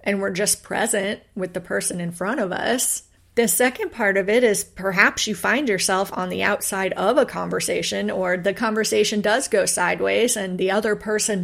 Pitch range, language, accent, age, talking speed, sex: 190-220 Hz, English, American, 30-49, 195 wpm, female